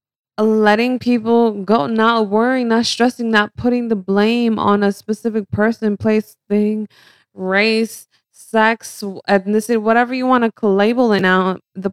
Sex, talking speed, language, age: female, 140 wpm, English, 20-39